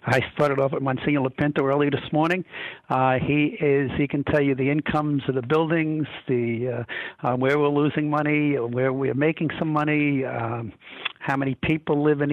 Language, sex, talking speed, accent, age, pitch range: English, male, 185 wpm, American, 60-79, 125-150 Hz